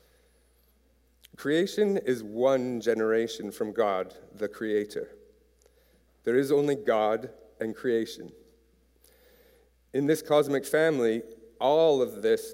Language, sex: English, male